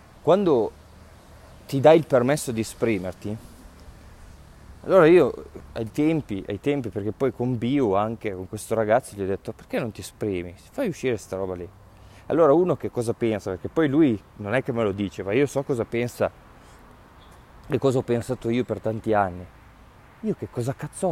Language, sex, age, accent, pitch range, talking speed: Italian, male, 20-39, native, 95-135 Hz, 180 wpm